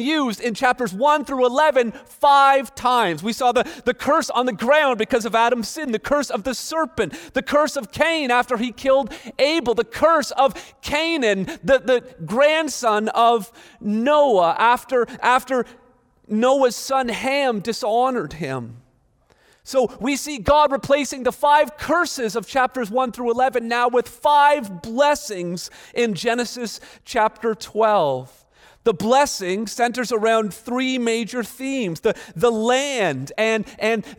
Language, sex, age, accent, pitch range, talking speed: English, male, 40-59, American, 220-275 Hz, 145 wpm